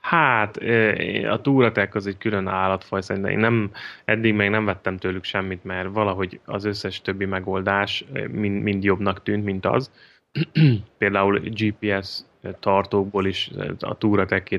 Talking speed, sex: 140 wpm, male